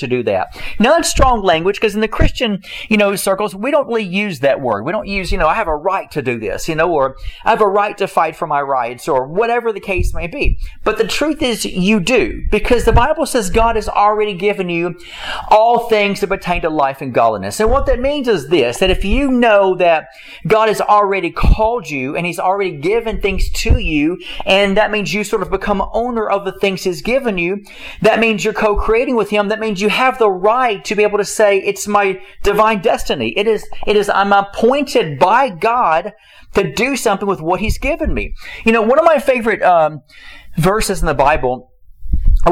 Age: 40-59